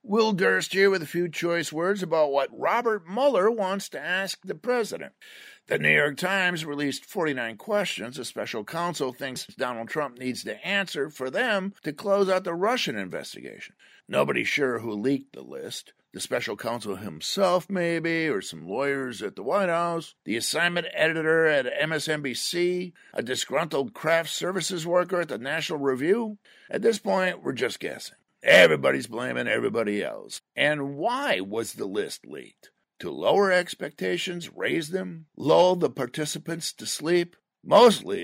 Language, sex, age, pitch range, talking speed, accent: English, male, 50-69, 140-190 Hz, 155 wpm, American